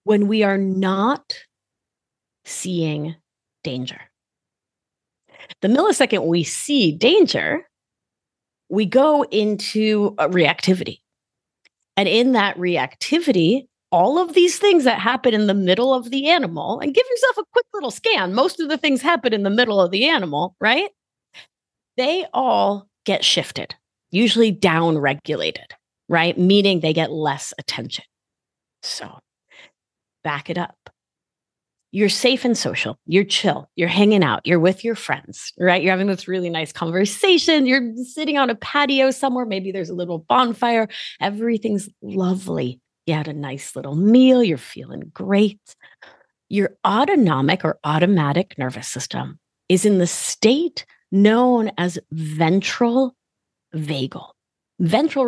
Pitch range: 170-255 Hz